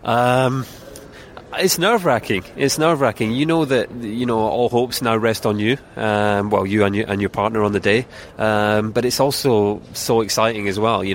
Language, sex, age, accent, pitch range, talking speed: English, male, 20-39, British, 100-120 Hz, 205 wpm